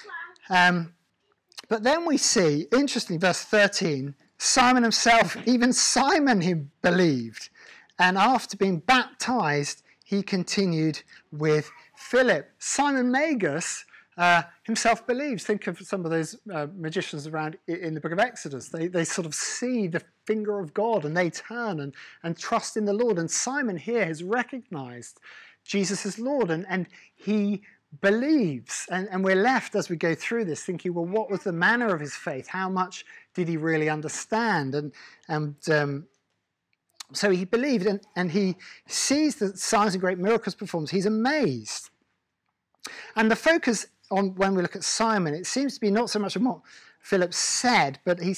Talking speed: 165 wpm